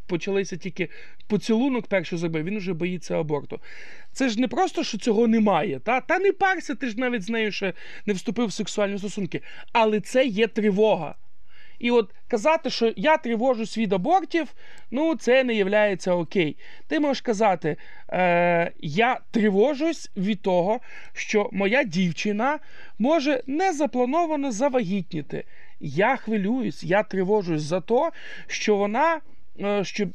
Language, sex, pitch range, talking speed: Ukrainian, male, 185-250 Hz, 140 wpm